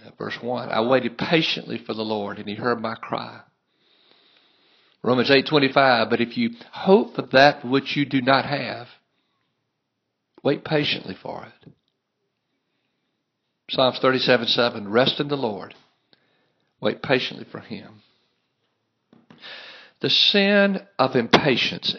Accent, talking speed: American, 120 wpm